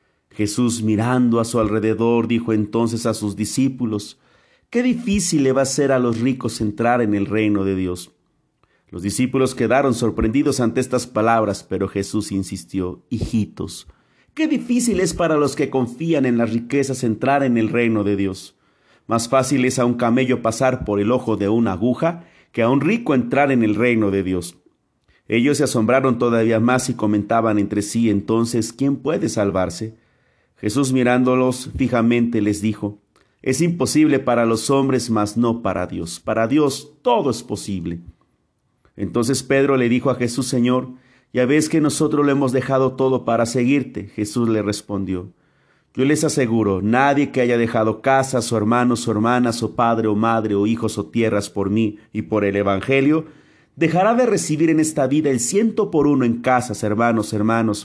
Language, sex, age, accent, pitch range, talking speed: Spanish, male, 40-59, Mexican, 105-130 Hz, 175 wpm